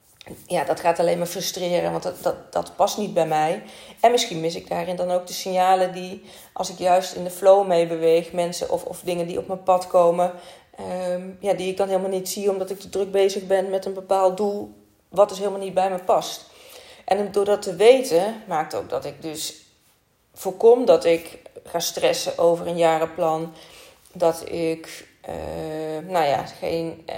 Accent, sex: Dutch, female